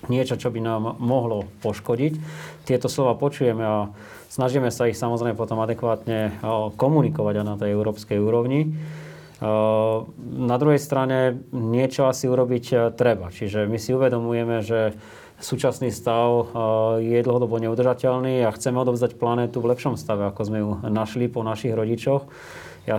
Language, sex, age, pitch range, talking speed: Slovak, male, 20-39, 110-130 Hz, 140 wpm